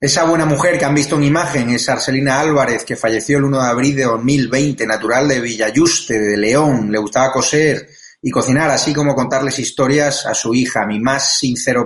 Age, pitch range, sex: 30-49, 120-145 Hz, male